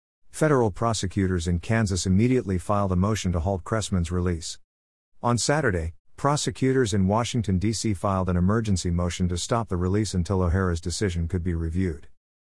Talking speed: 155 wpm